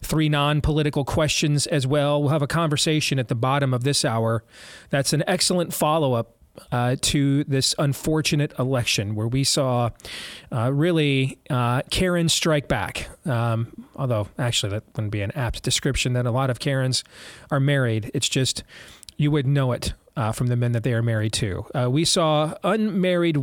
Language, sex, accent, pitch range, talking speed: English, male, American, 120-155 Hz, 175 wpm